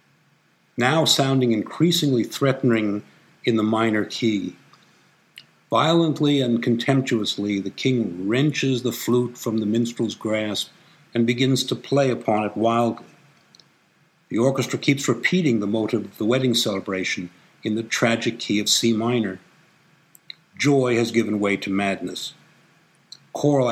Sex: male